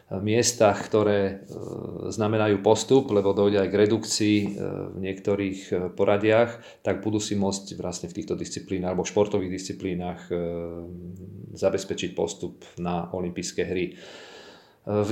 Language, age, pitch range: Slovak, 40-59, 100-115 Hz